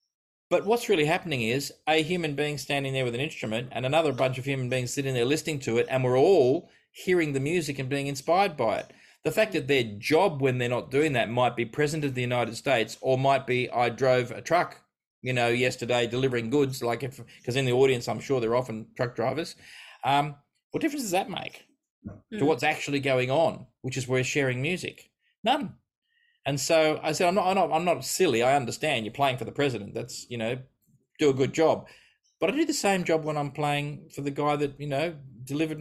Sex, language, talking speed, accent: male, English, 225 wpm, Australian